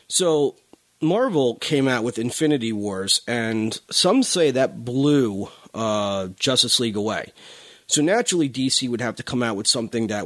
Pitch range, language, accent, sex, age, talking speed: 110-150 Hz, English, American, male, 30-49, 160 wpm